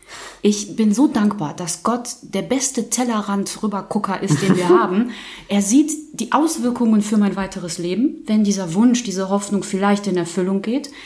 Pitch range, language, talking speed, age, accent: 175-220 Hz, German, 165 wpm, 30-49, German